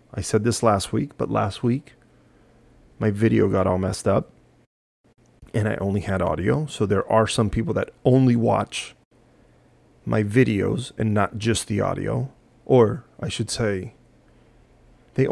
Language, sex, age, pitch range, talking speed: English, male, 30-49, 105-125 Hz, 155 wpm